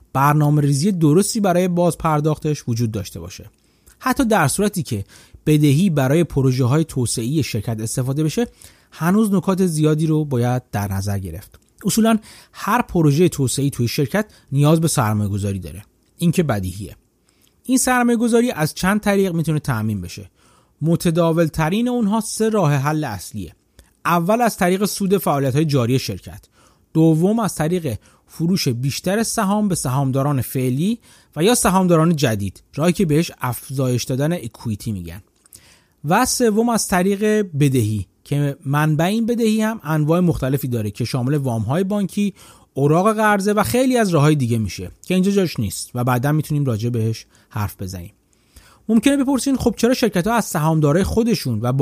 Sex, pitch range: male, 120-195 Hz